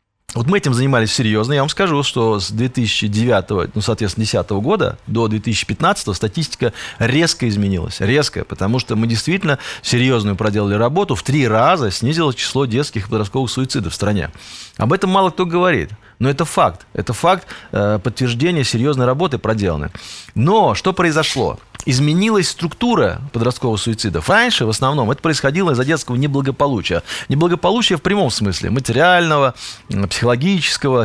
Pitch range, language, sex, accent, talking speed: 110-140 Hz, Russian, male, native, 145 wpm